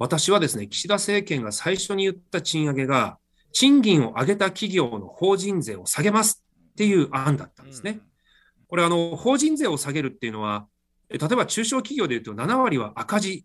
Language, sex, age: Japanese, male, 40-59